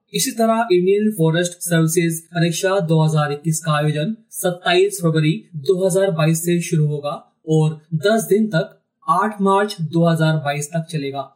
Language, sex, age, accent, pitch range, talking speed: Hindi, male, 30-49, native, 150-190 Hz, 125 wpm